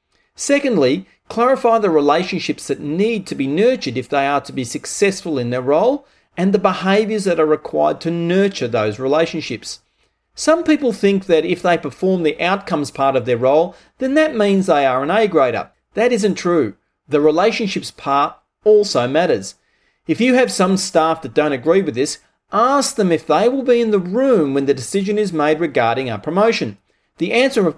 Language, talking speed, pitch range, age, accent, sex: English, 190 wpm, 145-215 Hz, 40-59, Australian, male